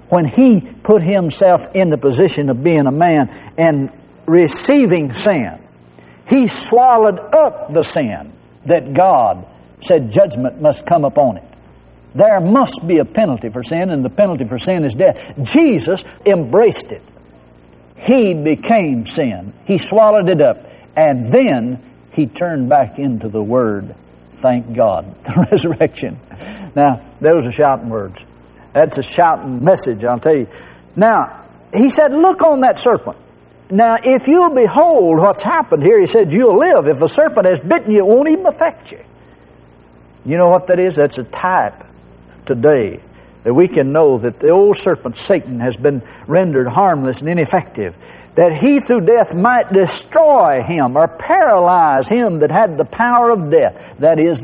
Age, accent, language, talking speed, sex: 60-79, American, English, 160 wpm, male